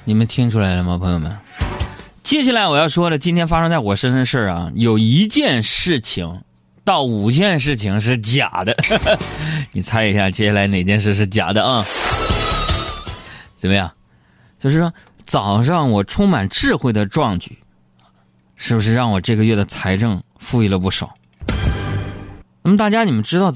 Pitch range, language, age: 95-140 Hz, Chinese, 20-39